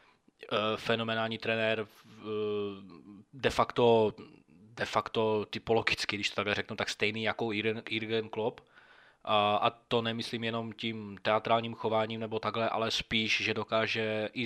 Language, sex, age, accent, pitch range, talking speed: Czech, male, 20-39, native, 105-115 Hz, 125 wpm